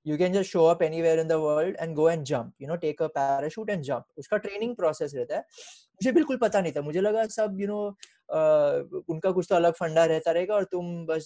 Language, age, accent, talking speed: Hindi, 20-39, native, 240 wpm